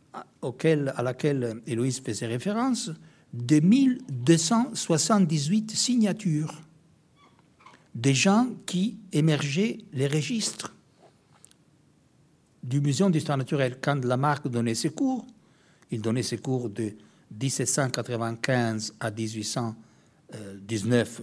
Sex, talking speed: male, 95 wpm